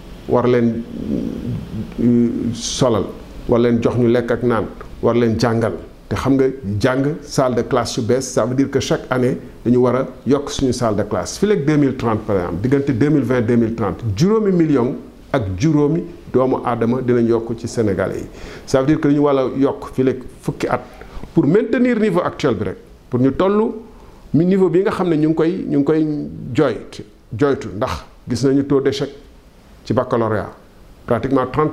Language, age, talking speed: French, 50-69, 110 wpm